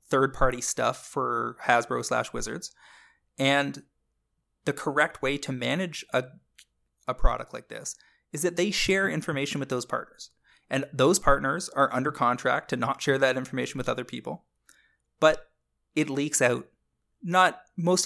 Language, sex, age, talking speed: English, male, 20-39, 150 wpm